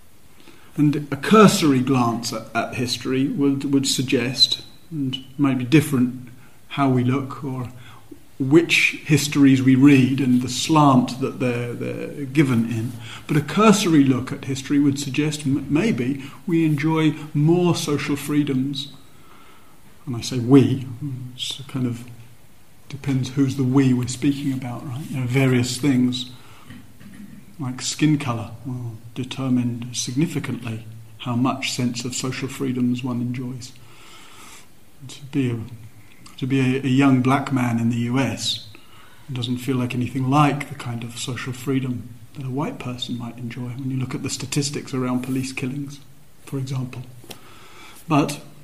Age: 40-59